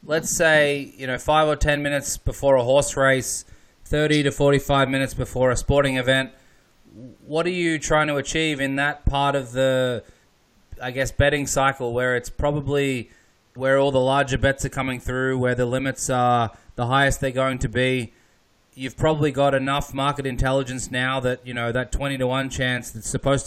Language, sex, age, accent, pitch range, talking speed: English, male, 20-39, Australian, 125-140 Hz, 185 wpm